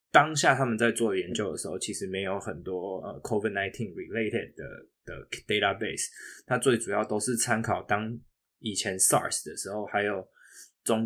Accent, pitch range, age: native, 100-125 Hz, 20-39